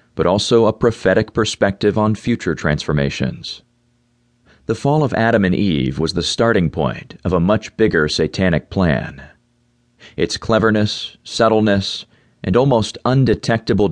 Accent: American